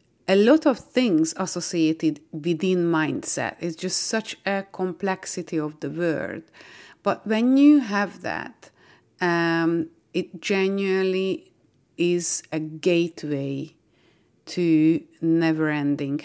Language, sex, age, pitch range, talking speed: English, female, 30-49, 155-190 Hz, 105 wpm